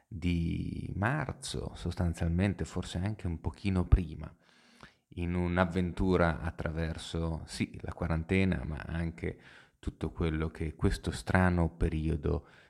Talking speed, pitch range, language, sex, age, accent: 105 wpm, 80-95 Hz, Italian, male, 30-49, native